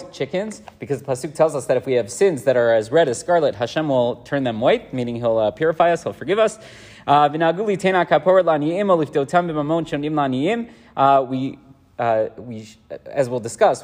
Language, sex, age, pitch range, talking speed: English, male, 30-49, 130-170 Hz, 160 wpm